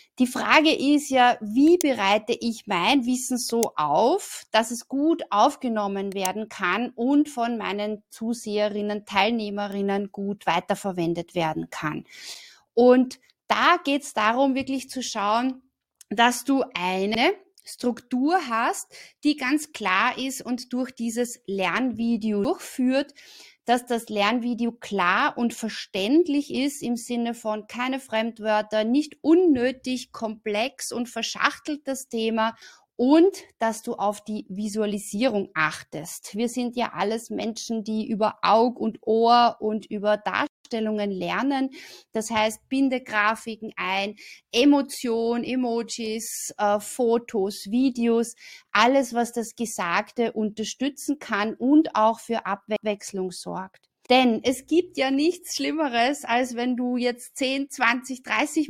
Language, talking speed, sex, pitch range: German, 125 wpm, female, 215-265 Hz